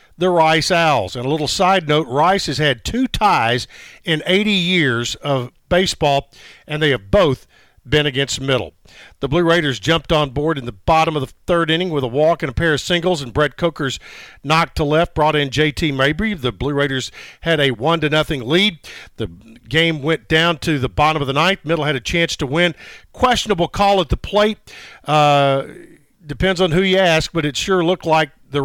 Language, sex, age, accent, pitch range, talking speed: English, male, 50-69, American, 140-175 Hz, 205 wpm